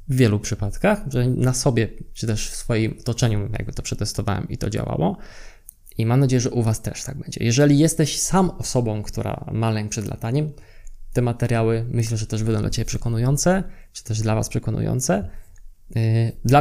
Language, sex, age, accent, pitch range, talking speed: Polish, male, 20-39, native, 110-130 Hz, 175 wpm